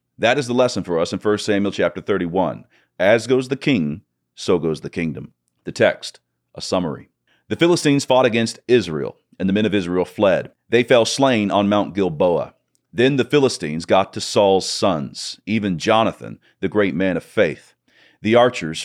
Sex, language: male, English